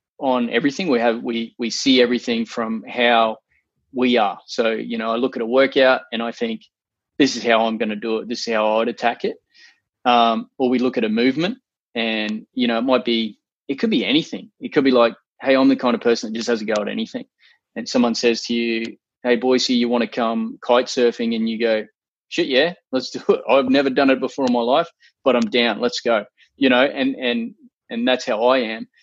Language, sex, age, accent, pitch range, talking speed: English, male, 20-39, Australian, 115-140 Hz, 240 wpm